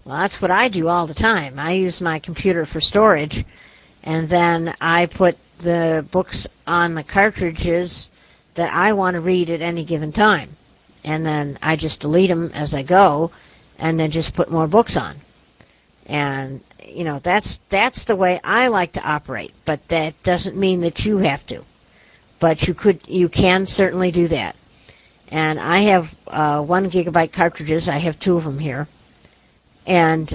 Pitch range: 155-185 Hz